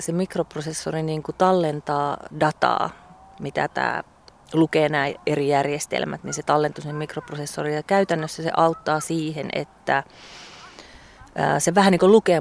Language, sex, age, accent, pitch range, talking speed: Finnish, female, 30-49, native, 145-165 Hz, 120 wpm